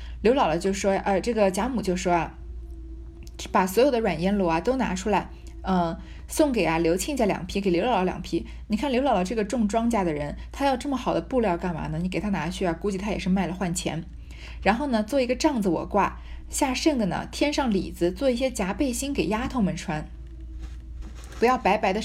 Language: Chinese